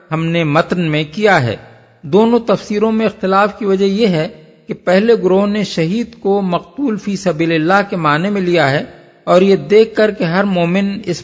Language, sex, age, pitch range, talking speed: Urdu, male, 50-69, 155-200 Hz, 200 wpm